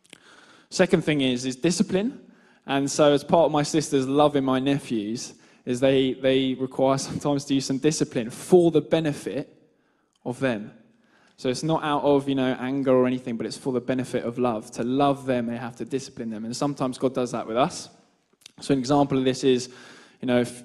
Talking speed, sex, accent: 205 wpm, male, British